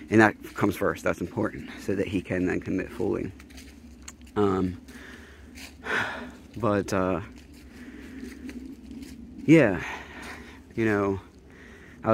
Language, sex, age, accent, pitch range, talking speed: English, male, 20-39, American, 95-115 Hz, 100 wpm